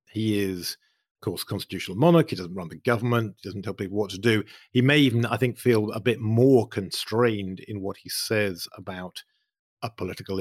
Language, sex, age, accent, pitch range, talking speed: English, male, 50-69, British, 95-120 Hz, 210 wpm